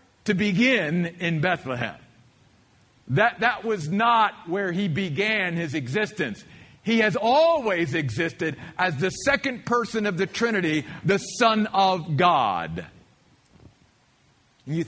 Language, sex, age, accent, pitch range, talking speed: English, male, 50-69, American, 150-230 Hz, 115 wpm